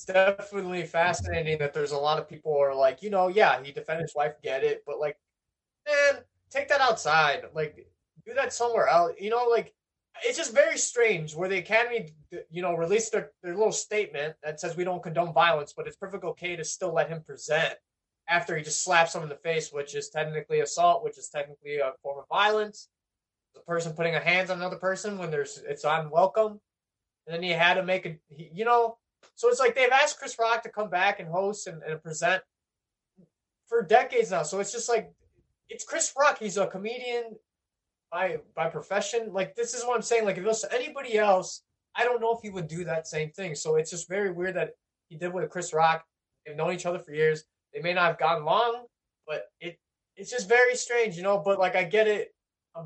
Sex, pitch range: male, 160-230 Hz